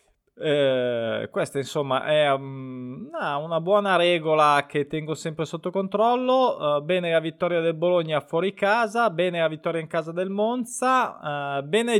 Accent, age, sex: native, 20-39, male